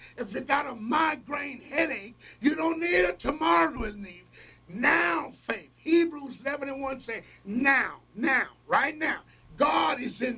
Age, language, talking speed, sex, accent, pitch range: 60-79, English, 160 wpm, male, American, 165-260 Hz